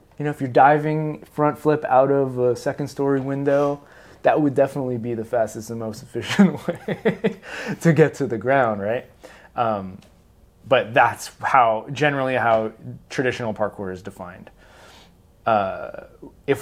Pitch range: 105-135 Hz